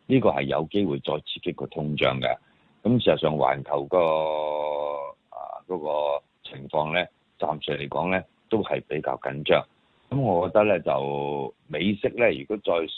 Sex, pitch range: male, 75-105 Hz